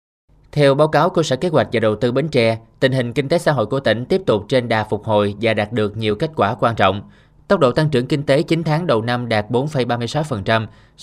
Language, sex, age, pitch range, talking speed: Vietnamese, male, 20-39, 110-140 Hz, 250 wpm